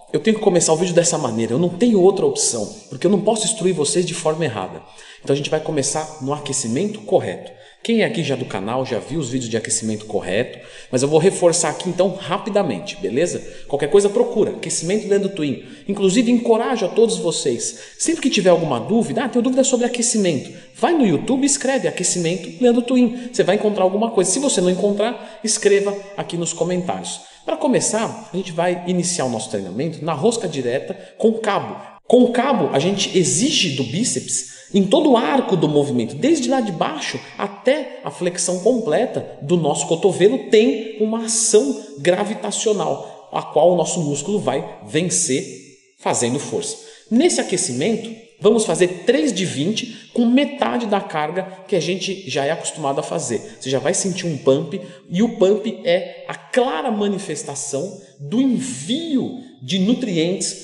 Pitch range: 160-230 Hz